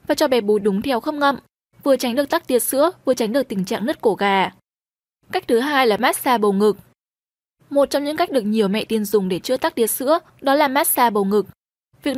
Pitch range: 215-285 Hz